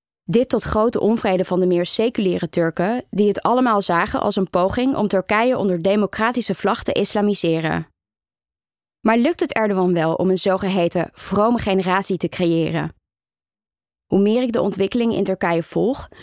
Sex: female